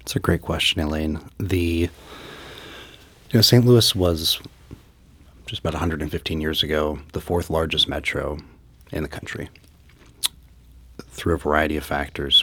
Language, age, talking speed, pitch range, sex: English, 30-49, 135 wpm, 75-90 Hz, male